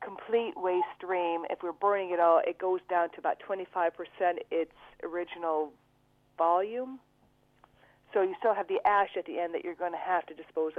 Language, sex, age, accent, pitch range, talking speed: English, female, 40-59, American, 160-185 Hz, 185 wpm